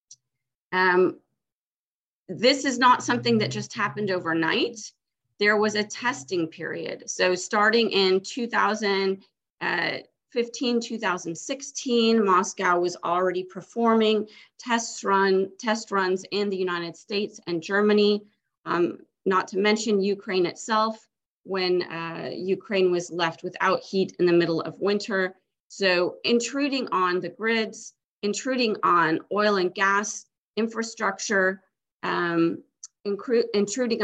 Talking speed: 110 wpm